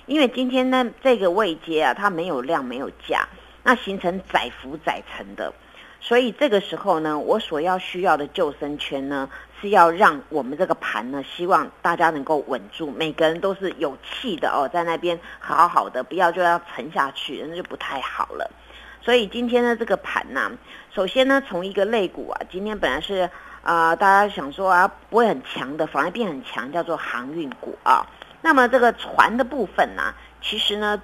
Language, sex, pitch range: Chinese, female, 165-235 Hz